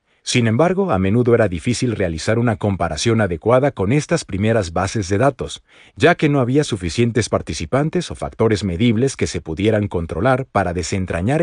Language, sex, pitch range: Spanish, male, 100-130 Hz